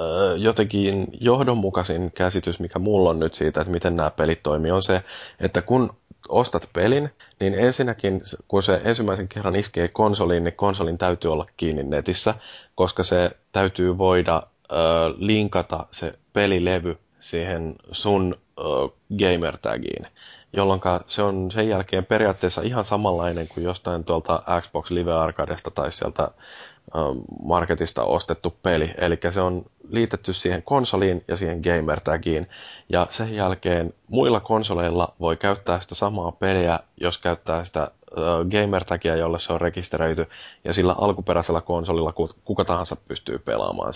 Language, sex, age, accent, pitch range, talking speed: Finnish, male, 20-39, native, 85-100 Hz, 135 wpm